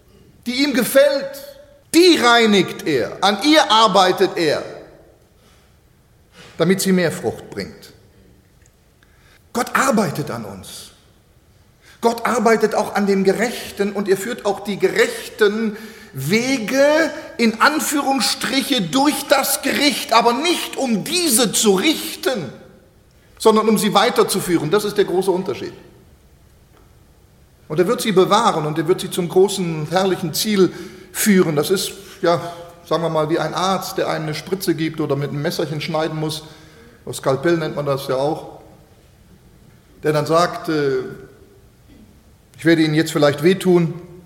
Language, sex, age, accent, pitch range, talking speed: German, male, 40-59, German, 170-230 Hz, 140 wpm